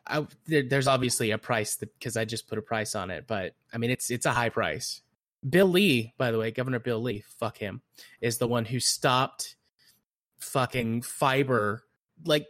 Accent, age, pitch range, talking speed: American, 20-39, 110-130 Hz, 190 wpm